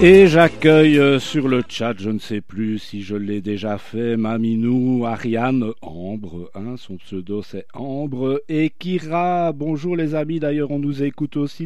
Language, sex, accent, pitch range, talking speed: French, male, French, 120-155 Hz, 165 wpm